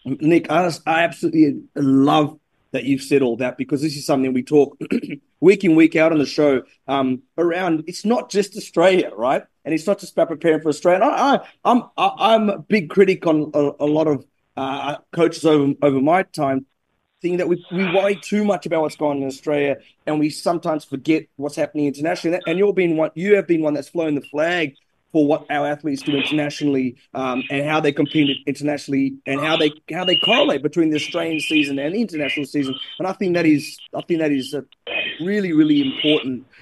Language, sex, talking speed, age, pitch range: English, male, 210 wpm, 30-49, 140-170 Hz